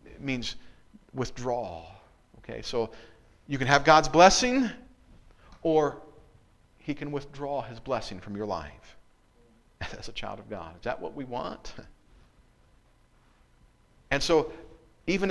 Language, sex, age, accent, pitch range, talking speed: English, male, 50-69, American, 110-160 Hz, 120 wpm